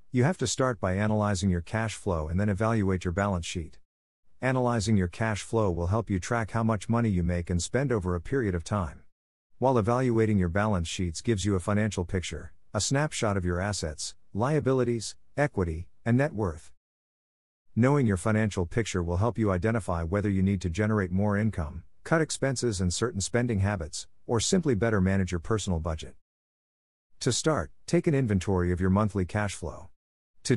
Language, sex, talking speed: English, male, 185 wpm